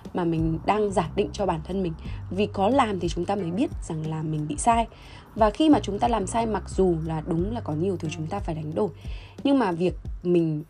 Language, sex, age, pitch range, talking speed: Vietnamese, female, 20-39, 150-205 Hz, 260 wpm